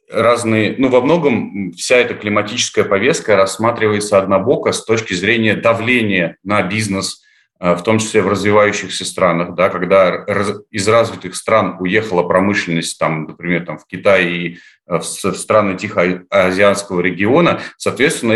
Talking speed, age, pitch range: 130 wpm, 30-49, 90-105 Hz